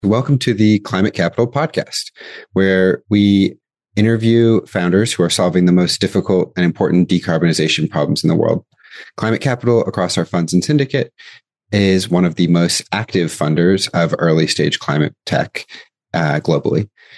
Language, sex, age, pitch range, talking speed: English, male, 30-49, 85-105 Hz, 155 wpm